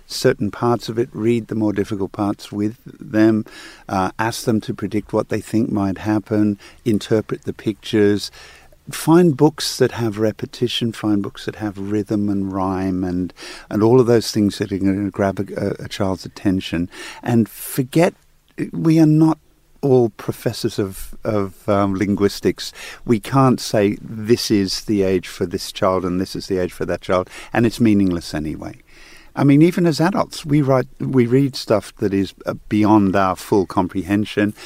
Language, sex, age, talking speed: English, male, 50-69, 175 wpm